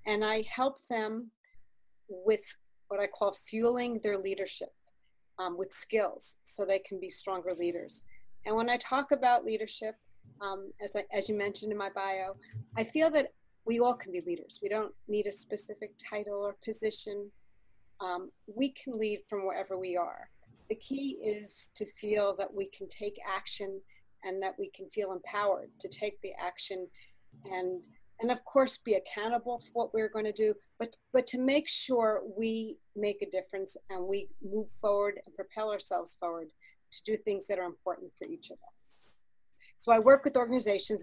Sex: female